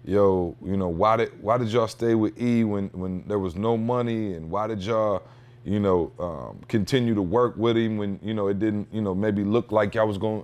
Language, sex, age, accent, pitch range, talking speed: English, male, 30-49, American, 90-115 Hz, 240 wpm